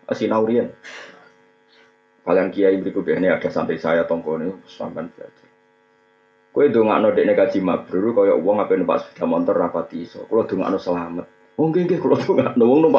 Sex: male